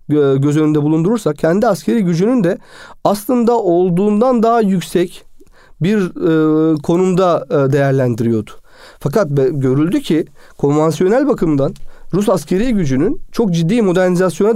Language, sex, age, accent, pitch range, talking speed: Turkish, male, 40-59, native, 150-210 Hz, 110 wpm